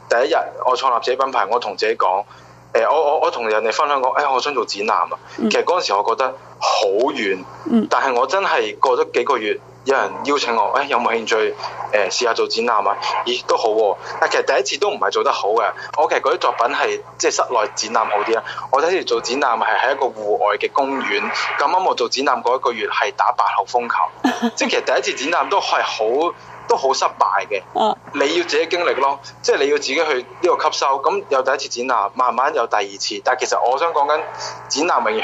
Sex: male